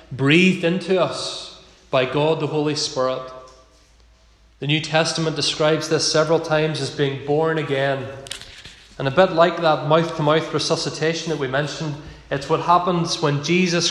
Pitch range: 150-175 Hz